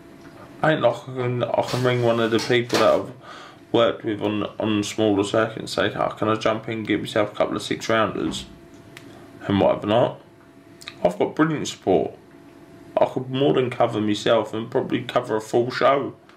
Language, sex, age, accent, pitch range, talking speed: English, male, 20-39, British, 115-140 Hz, 185 wpm